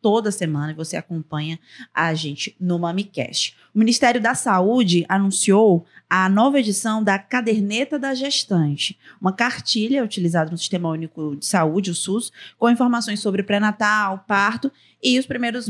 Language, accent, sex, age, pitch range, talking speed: Portuguese, Brazilian, female, 20-39, 175-225 Hz, 145 wpm